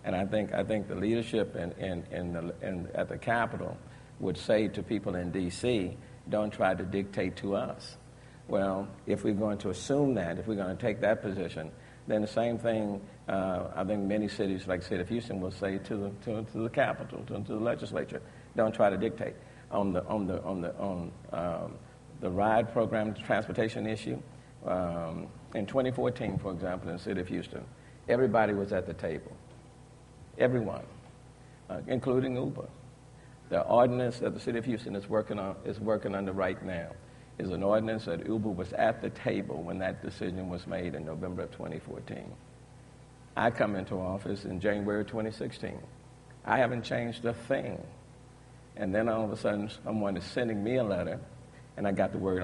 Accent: American